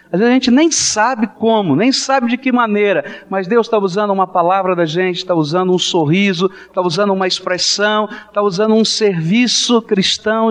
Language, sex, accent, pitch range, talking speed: Portuguese, male, Brazilian, 165-235 Hz, 190 wpm